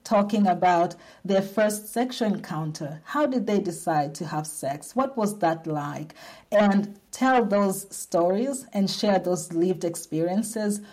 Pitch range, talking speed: 175-215 Hz, 145 wpm